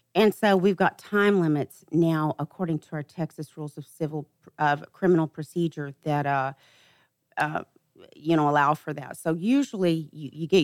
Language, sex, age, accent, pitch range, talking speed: English, female, 40-59, American, 145-185 Hz, 170 wpm